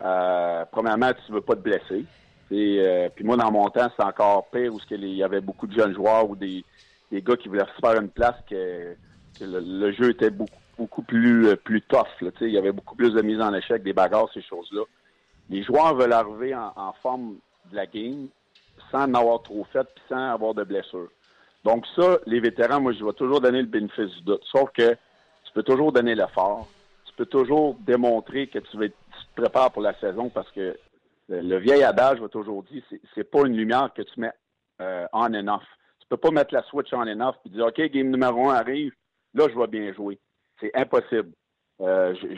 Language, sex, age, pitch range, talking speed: French, male, 50-69, 100-125 Hz, 220 wpm